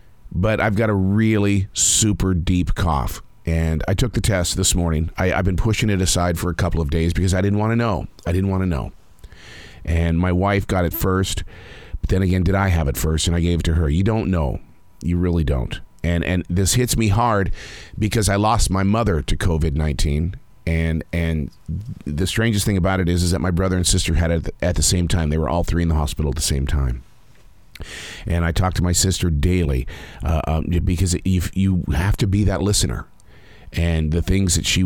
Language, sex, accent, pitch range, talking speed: English, male, American, 80-100 Hz, 225 wpm